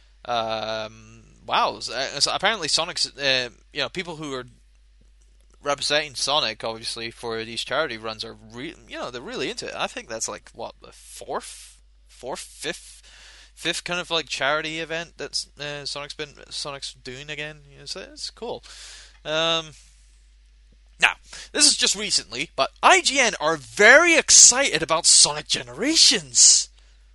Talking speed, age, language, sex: 135 wpm, 20-39, English, male